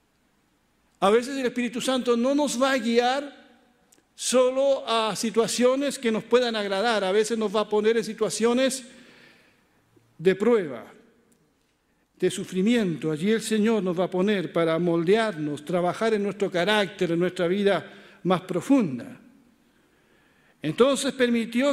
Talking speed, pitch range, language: 135 wpm, 205-255 Hz, Spanish